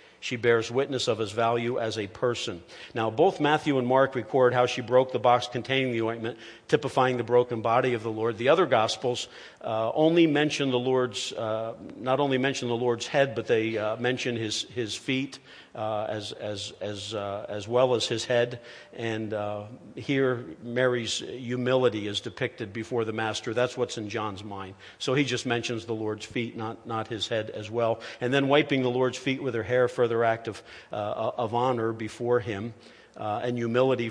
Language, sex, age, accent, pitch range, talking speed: English, male, 50-69, American, 110-130 Hz, 195 wpm